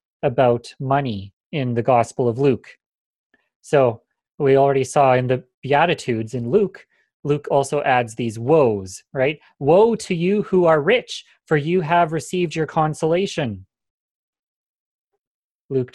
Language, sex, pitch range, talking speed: English, male, 125-155 Hz, 130 wpm